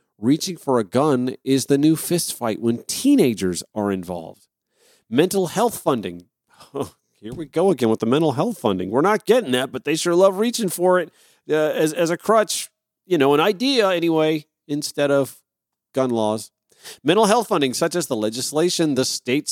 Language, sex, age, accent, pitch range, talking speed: English, male, 40-59, American, 115-165 Hz, 180 wpm